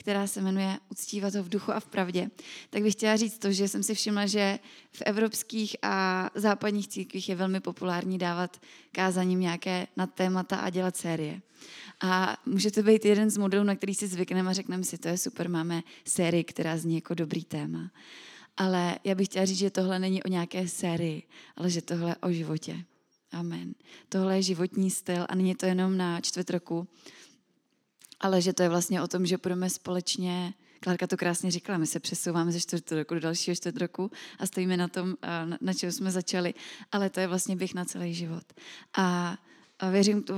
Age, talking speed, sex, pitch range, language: 20-39, 195 wpm, female, 180-200 Hz, Czech